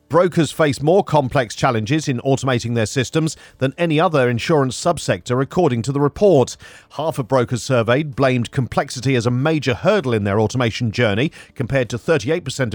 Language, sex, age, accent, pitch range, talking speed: English, male, 40-59, British, 120-155 Hz, 165 wpm